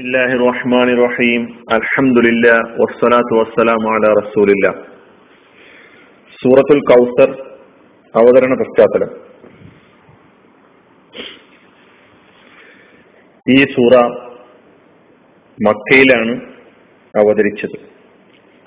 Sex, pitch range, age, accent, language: male, 115-140 Hz, 40-59, native, Malayalam